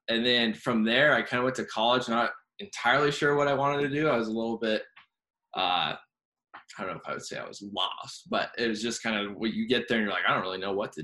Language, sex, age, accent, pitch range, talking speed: English, male, 20-39, American, 105-125 Hz, 290 wpm